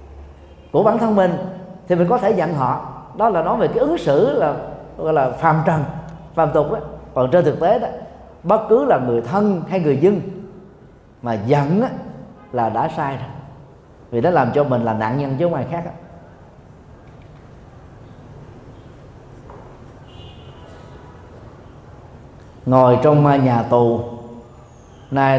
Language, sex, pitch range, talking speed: Vietnamese, male, 120-165 Hz, 145 wpm